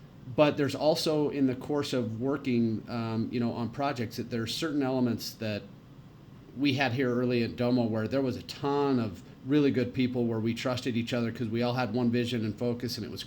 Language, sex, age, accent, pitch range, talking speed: English, male, 30-49, American, 110-135 Hz, 225 wpm